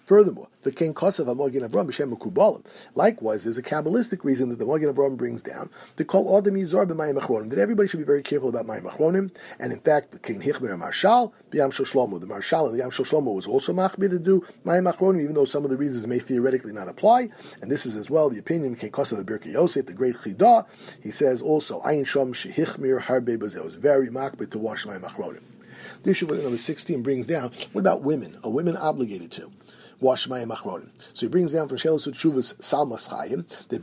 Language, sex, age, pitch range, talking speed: English, male, 50-69, 125-170 Hz, 220 wpm